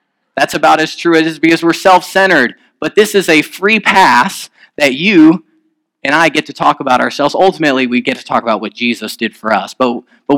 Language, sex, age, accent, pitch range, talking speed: English, male, 30-49, American, 130-175 Hz, 220 wpm